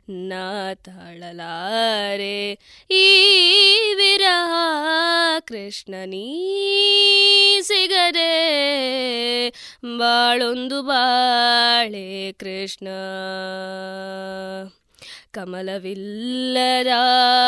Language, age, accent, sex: Kannada, 20-39, native, female